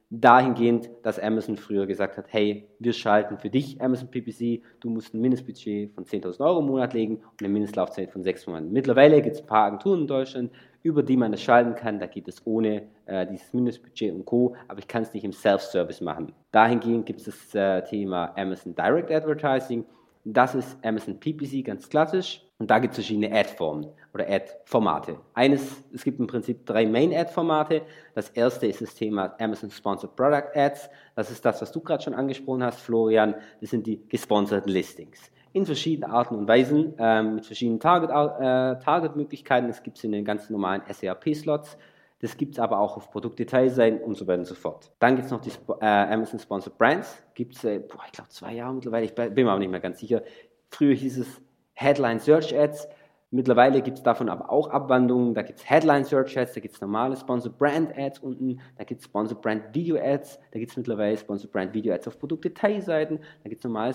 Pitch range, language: 110-135 Hz, German